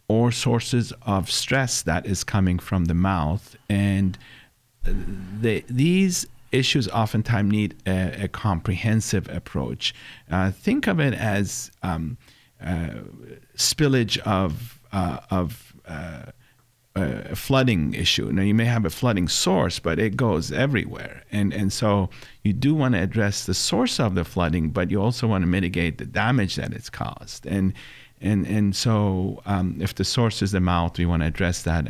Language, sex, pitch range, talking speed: English, male, 85-110 Hz, 160 wpm